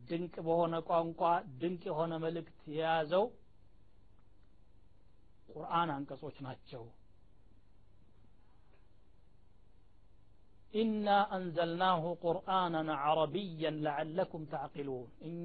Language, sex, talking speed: Amharic, male, 70 wpm